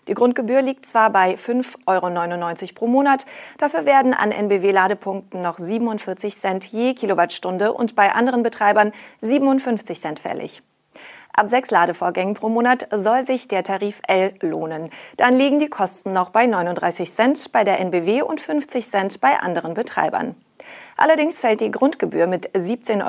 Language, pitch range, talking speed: German, 190-250 Hz, 155 wpm